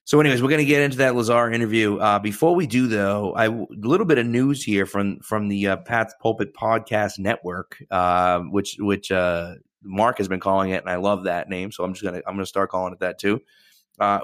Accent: American